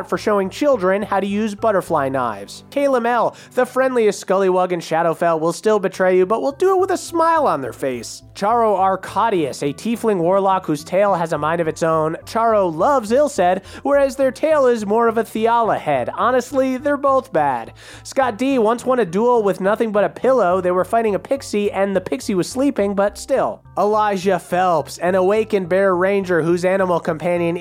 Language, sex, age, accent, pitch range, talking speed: English, male, 30-49, American, 175-225 Hz, 195 wpm